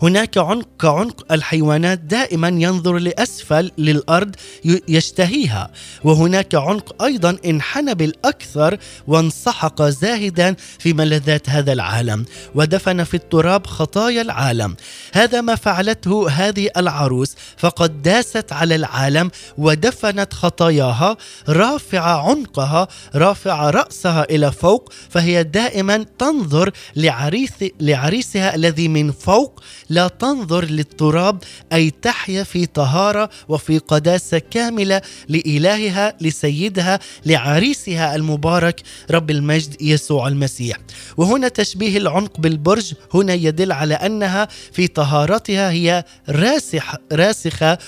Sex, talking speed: male, 100 wpm